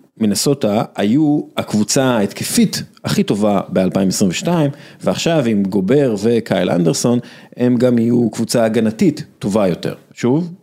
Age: 40-59